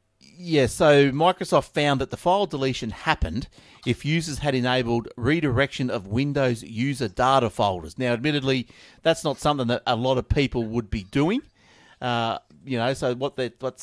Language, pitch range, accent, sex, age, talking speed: English, 110-135 Hz, Australian, male, 40-59, 170 wpm